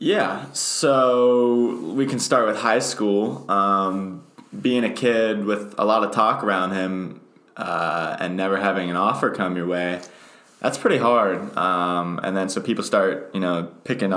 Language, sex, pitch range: English, male, 85-100 Hz